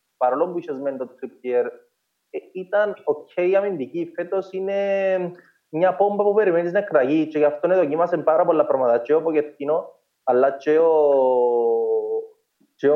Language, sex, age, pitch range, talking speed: Greek, male, 20-39, 130-190 Hz, 90 wpm